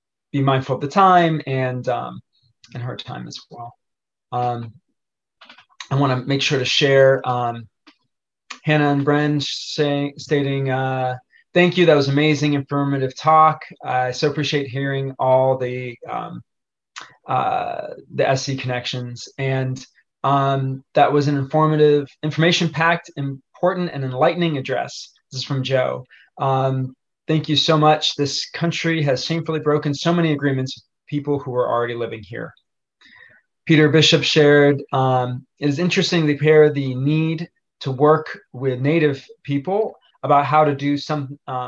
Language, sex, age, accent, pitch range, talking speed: English, male, 20-39, American, 130-150 Hz, 140 wpm